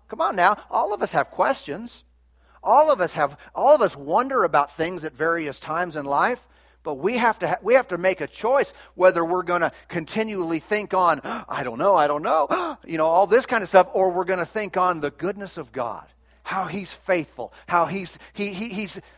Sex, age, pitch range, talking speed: male, 40-59, 140-185 Hz, 225 wpm